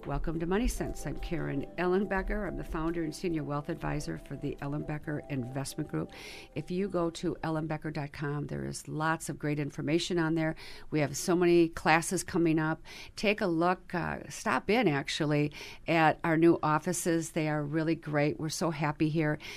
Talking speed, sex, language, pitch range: 185 wpm, female, English, 150-170 Hz